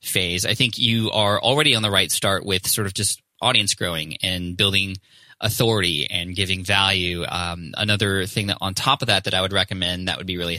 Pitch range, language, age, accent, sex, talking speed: 95-115 Hz, English, 20-39, American, male, 215 wpm